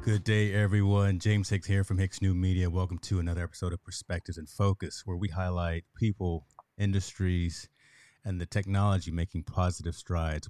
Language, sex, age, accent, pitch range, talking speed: English, male, 30-49, American, 85-105 Hz, 165 wpm